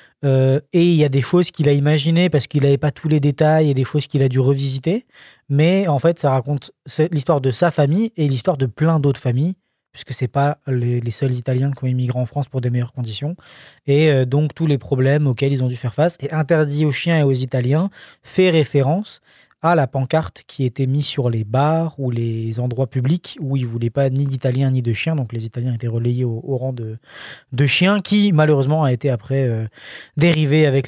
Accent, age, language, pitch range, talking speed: French, 20-39, French, 130-155 Hz, 225 wpm